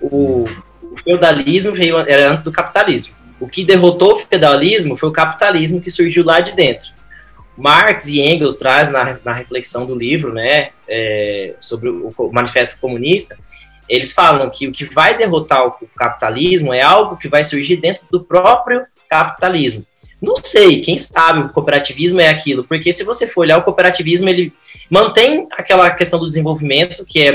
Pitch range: 145-190 Hz